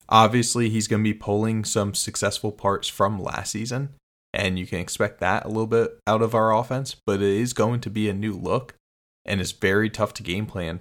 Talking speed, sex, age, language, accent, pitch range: 220 wpm, male, 20-39, English, American, 95-110 Hz